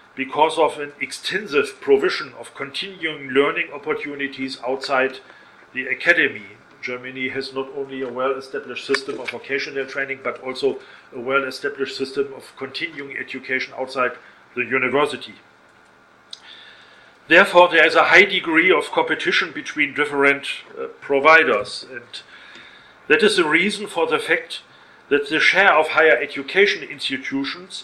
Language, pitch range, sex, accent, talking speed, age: English, 135-205 Hz, male, German, 130 wpm, 40-59